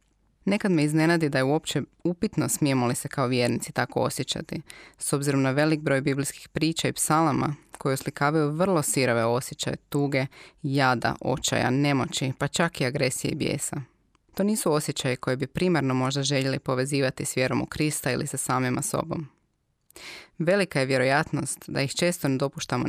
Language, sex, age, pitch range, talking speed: Croatian, female, 20-39, 130-155 Hz, 165 wpm